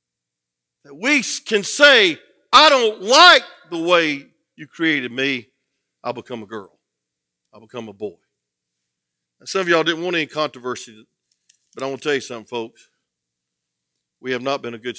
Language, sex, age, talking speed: English, male, 50-69, 160 wpm